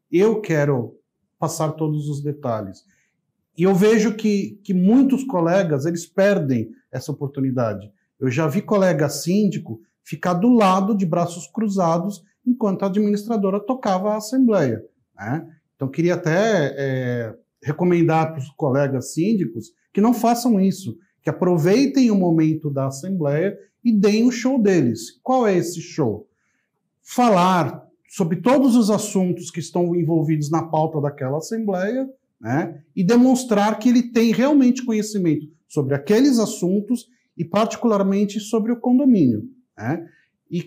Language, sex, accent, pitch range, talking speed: Portuguese, male, Brazilian, 155-220 Hz, 135 wpm